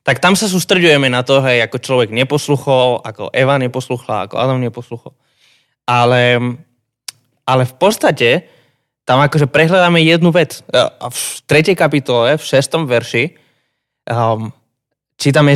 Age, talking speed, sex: 20-39, 130 wpm, male